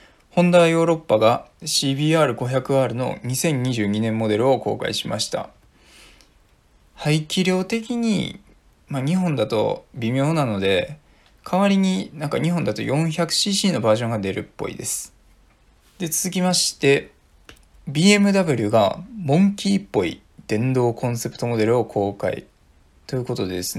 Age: 20-39